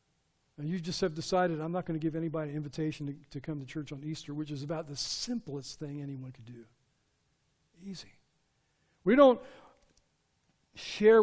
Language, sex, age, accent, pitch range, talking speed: English, male, 50-69, American, 160-215 Hz, 170 wpm